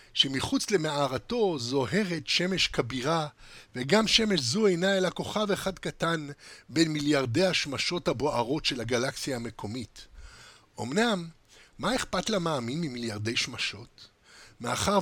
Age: 50-69